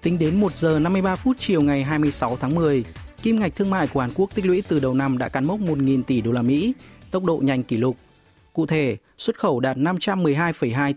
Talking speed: 235 wpm